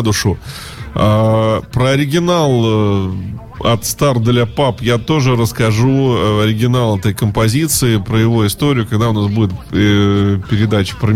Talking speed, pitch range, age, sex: 140 wpm, 105-130 Hz, 20-39, male